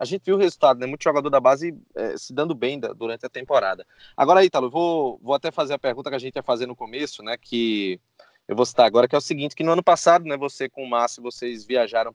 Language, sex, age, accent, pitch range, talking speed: Portuguese, male, 20-39, Brazilian, 125-175 Hz, 275 wpm